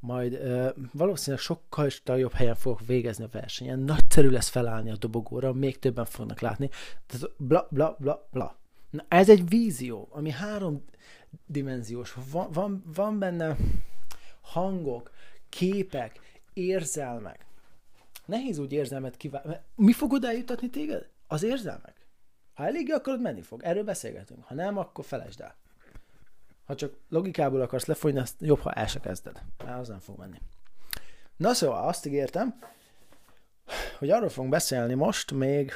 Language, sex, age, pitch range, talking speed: Hungarian, male, 30-49, 125-170 Hz, 140 wpm